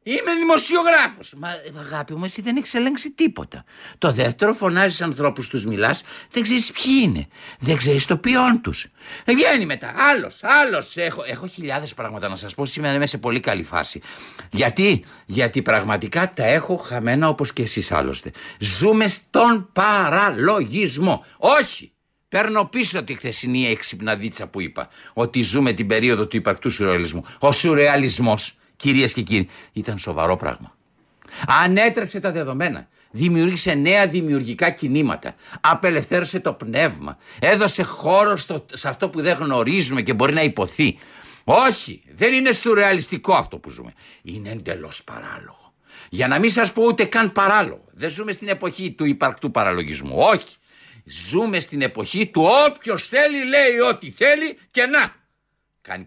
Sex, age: male, 60-79